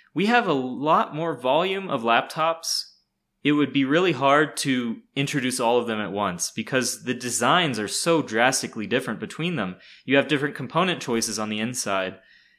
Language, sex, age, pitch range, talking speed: English, male, 20-39, 120-160 Hz, 175 wpm